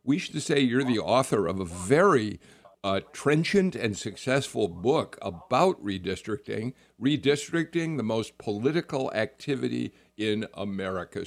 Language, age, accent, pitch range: English, 50-69, American, 105-145 Hz